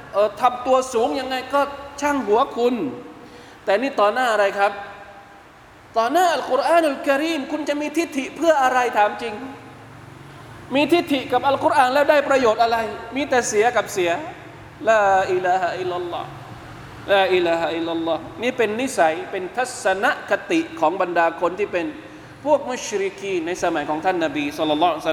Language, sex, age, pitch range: Thai, male, 20-39, 175-280 Hz